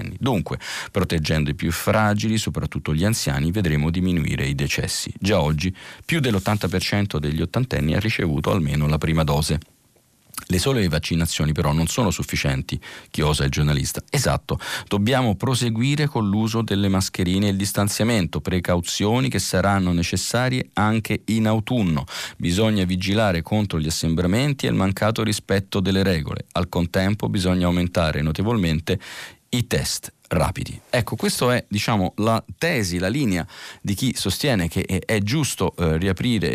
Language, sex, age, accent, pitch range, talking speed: Italian, male, 40-59, native, 85-105 Hz, 140 wpm